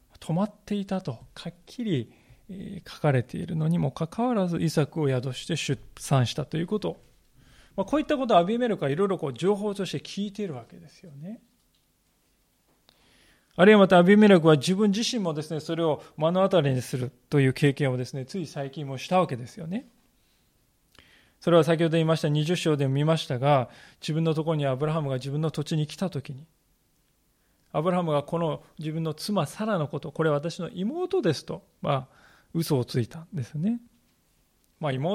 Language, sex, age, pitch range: Japanese, male, 20-39, 140-185 Hz